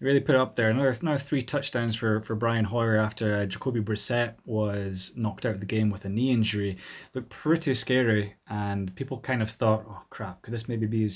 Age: 20-39